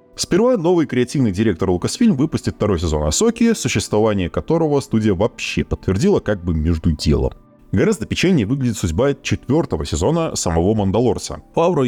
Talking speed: 135 wpm